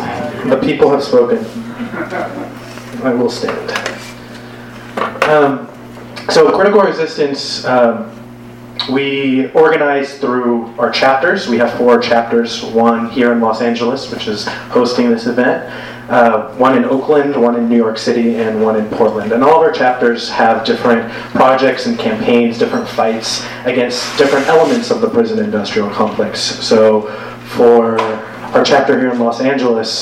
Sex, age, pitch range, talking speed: male, 30-49, 115-140 Hz, 145 wpm